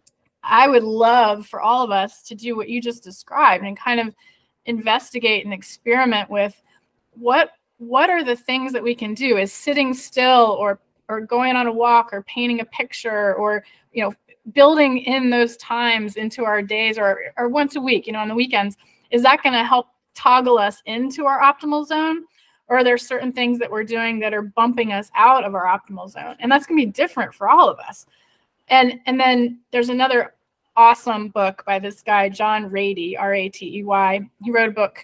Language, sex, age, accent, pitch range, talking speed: English, female, 20-39, American, 210-250 Hz, 200 wpm